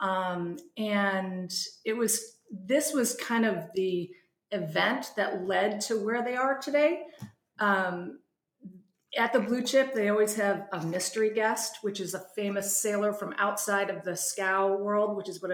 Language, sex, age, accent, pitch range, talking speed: English, female, 30-49, American, 185-220 Hz, 160 wpm